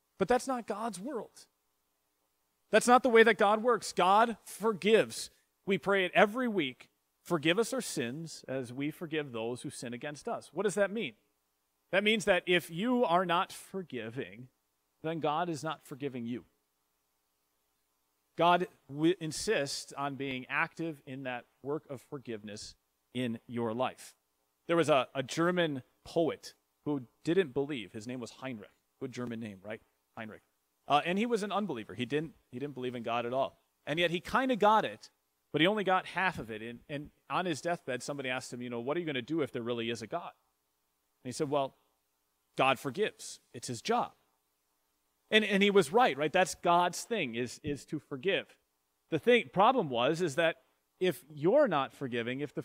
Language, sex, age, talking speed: English, male, 40-59, 190 wpm